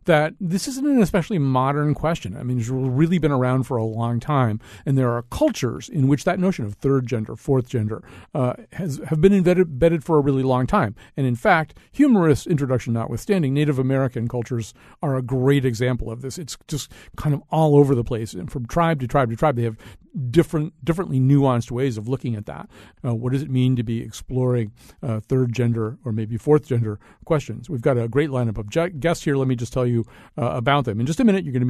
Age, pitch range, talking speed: 50-69, 115-150 Hz, 230 wpm